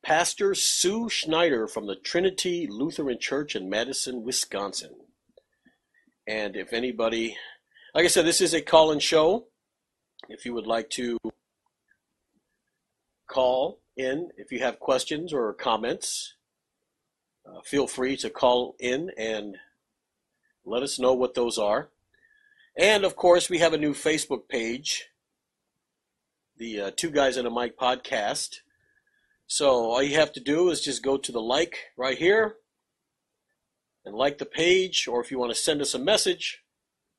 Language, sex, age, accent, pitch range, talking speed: English, male, 50-69, American, 125-185 Hz, 150 wpm